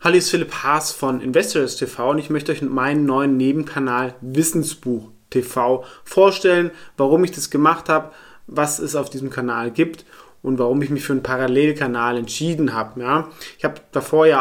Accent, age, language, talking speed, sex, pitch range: German, 30-49, German, 165 wpm, male, 135-165 Hz